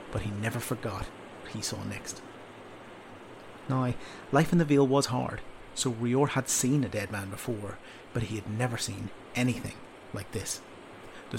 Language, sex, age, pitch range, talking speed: English, male, 30-49, 110-130 Hz, 170 wpm